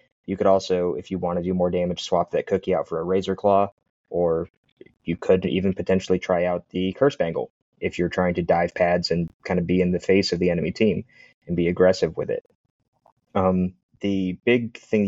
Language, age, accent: English, 20-39, American